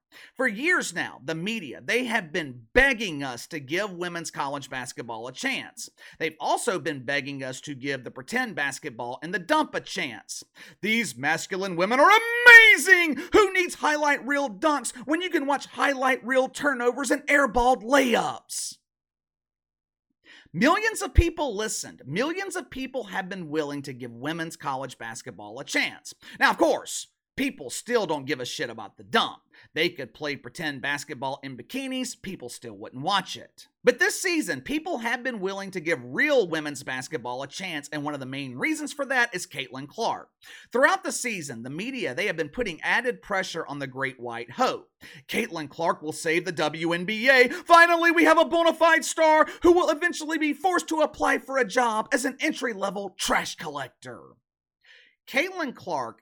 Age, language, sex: 40-59, English, male